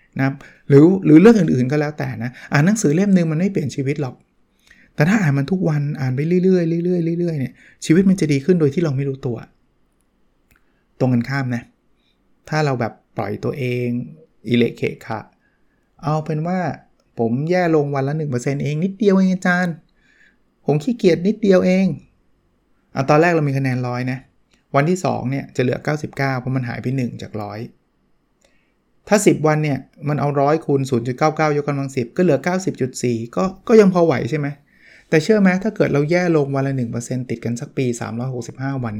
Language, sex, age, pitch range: Thai, male, 20-39, 125-160 Hz